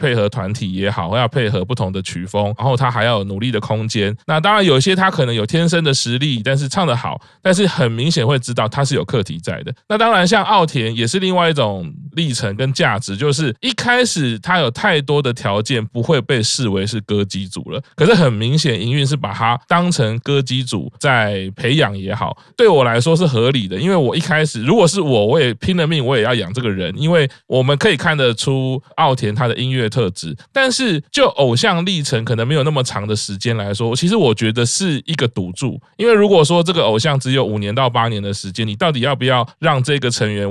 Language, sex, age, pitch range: Chinese, male, 20-39, 110-160 Hz